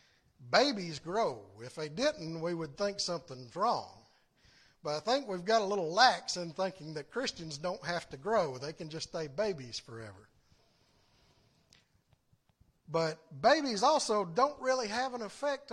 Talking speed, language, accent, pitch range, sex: 155 wpm, English, American, 150-235 Hz, male